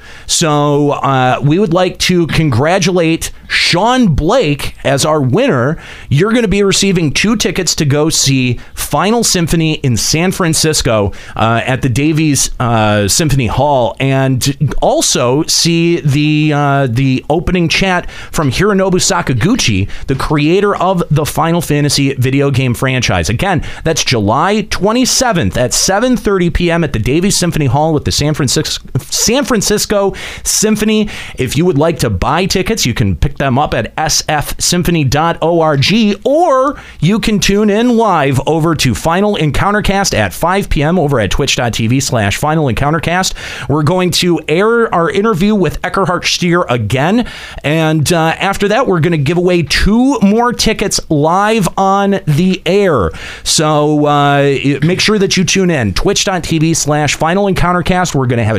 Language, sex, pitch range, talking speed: English, male, 135-190 Hz, 150 wpm